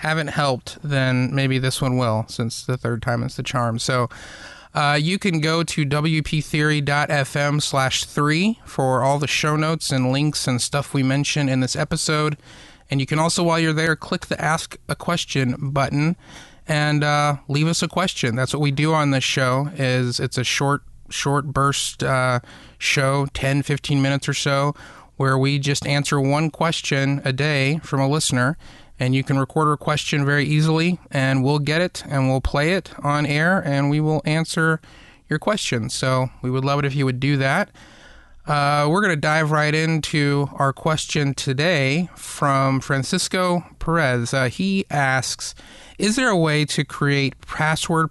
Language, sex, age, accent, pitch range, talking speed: English, male, 30-49, American, 135-155 Hz, 180 wpm